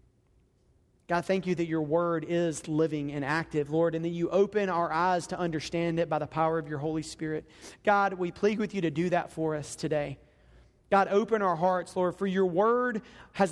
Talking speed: 210 wpm